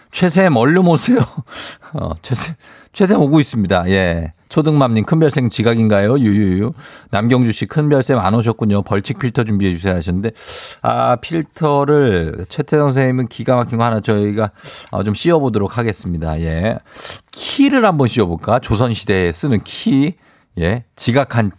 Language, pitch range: Korean, 95-135 Hz